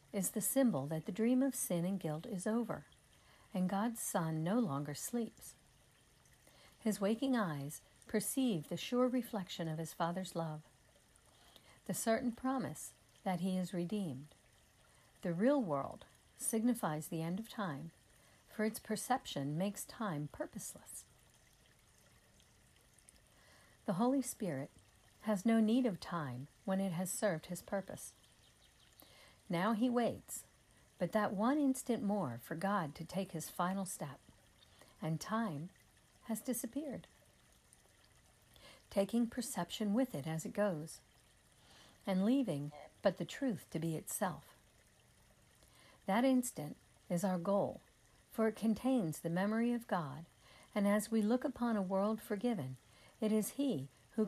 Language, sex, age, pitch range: English, female, 60-79, 155-225 Hz